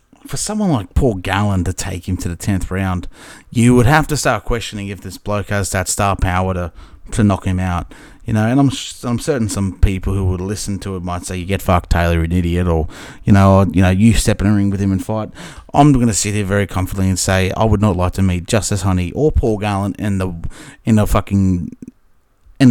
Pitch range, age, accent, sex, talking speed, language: 90-115 Hz, 30-49, Australian, male, 245 wpm, English